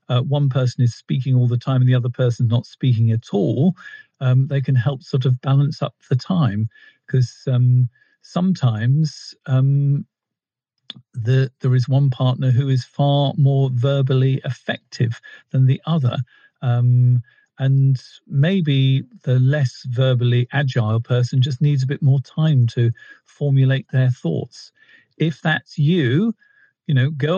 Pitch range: 125-155 Hz